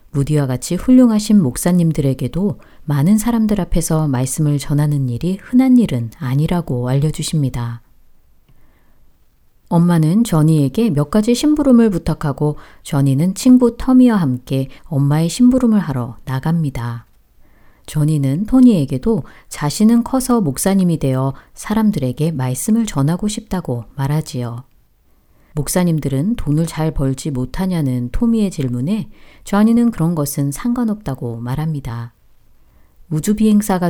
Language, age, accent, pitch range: Korean, 40-59, native, 135-200 Hz